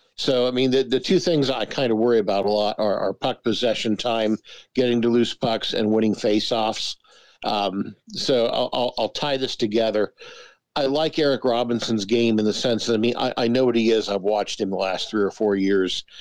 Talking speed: 220 wpm